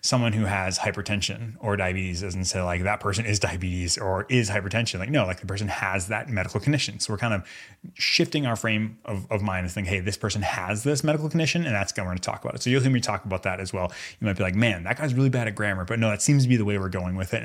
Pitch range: 95-130 Hz